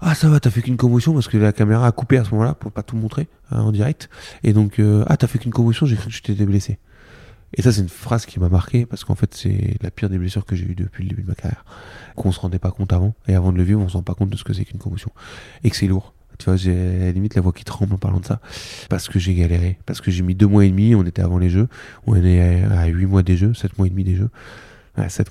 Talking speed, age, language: 320 wpm, 20-39, French